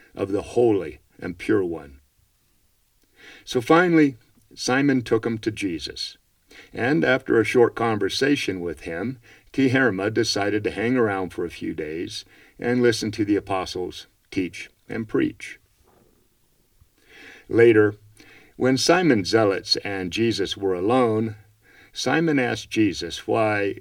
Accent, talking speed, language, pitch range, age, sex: American, 125 wpm, English, 105-125 Hz, 50-69, male